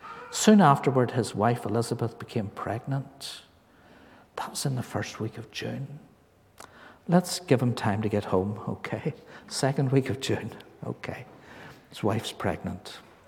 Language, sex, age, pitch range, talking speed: English, male, 60-79, 125-175 Hz, 140 wpm